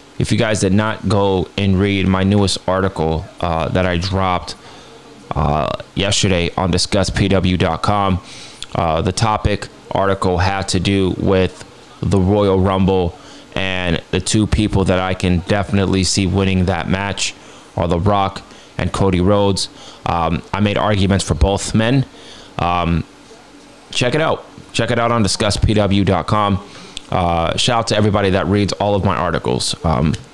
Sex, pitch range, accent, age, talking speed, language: male, 90-105 Hz, American, 20-39, 150 wpm, English